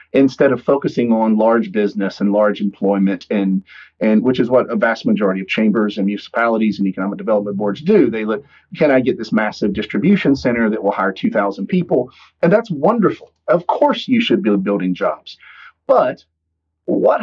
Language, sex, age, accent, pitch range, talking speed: English, male, 40-59, American, 100-145 Hz, 180 wpm